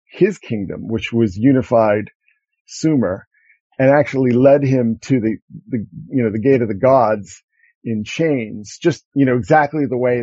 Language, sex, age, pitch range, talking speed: English, male, 50-69, 120-155 Hz, 165 wpm